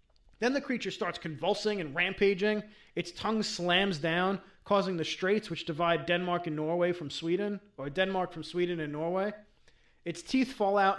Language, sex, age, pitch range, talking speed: English, male, 30-49, 165-210 Hz, 170 wpm